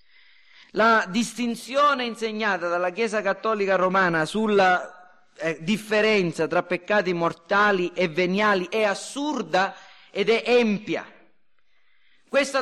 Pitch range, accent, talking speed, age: 195-265 Hz, native, 100 wpm, 40-59